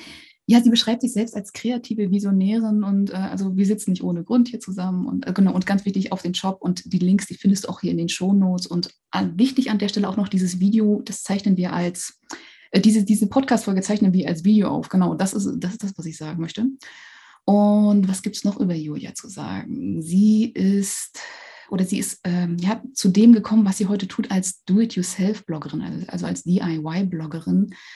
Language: German